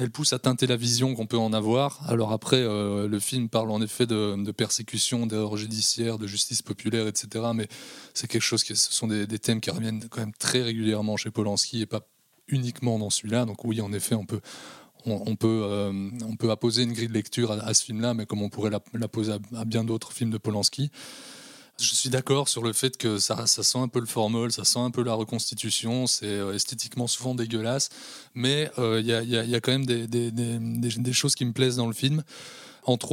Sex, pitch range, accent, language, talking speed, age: male, 110-125 Hz, French, French, 230 wpm, 20-39